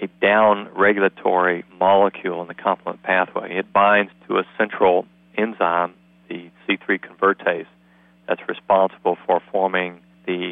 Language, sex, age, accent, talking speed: English, male, 40-59, American, 120 wpm